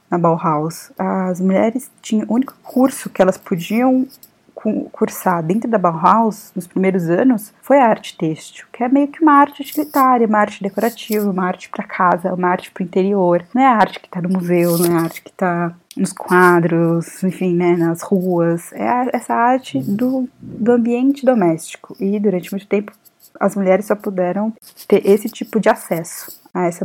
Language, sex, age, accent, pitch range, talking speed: Portuguese, female, 20-39, Brazilian, 175-230 Hz, 190 wpm